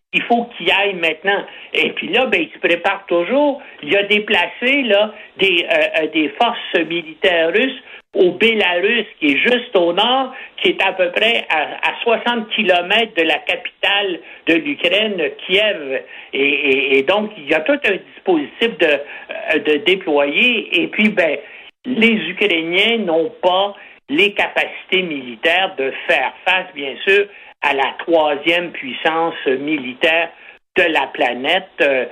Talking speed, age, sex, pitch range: 155 wpm, 60-79, male, 165-235 Hz